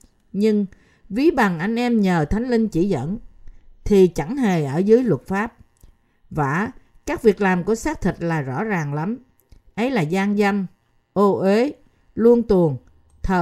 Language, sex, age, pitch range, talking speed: Vietnamese, female, 50-69, 155-230 Hz, 165 wpm